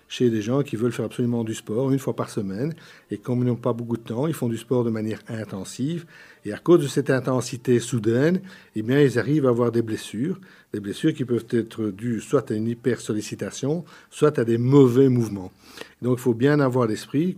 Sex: male